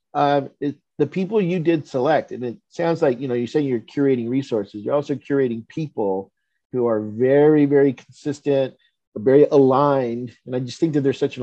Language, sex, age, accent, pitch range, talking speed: English, male, 50-69, American, 115-145 Hz, 185 wpm